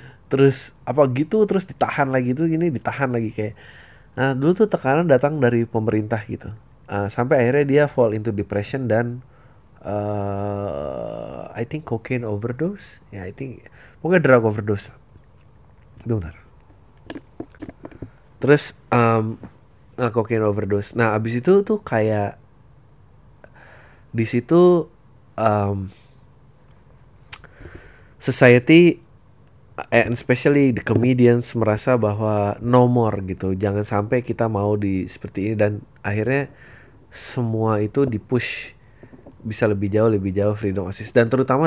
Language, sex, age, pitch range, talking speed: Indonesian, male, 30-49, 105-130 Hz, 120 wpm